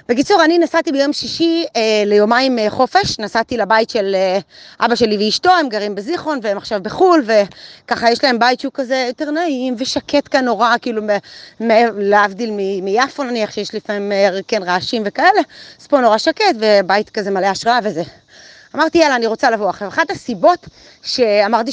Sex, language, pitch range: female, Hebrew, 210-280 Hz